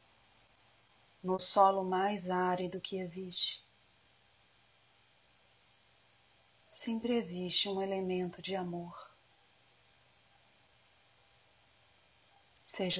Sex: female